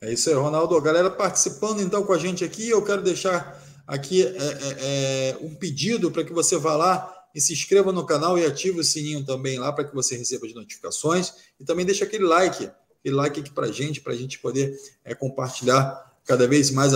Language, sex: Portuguese, male